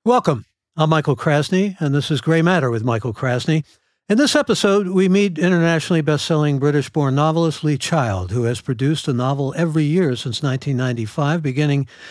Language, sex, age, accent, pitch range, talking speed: English, male, 60-79, American, 140-170 Hz, 165 wpm